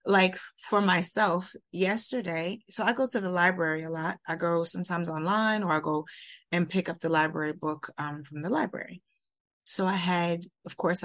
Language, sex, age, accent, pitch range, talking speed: English, female, 30-49, American, 170-240 Hz, 185 wpm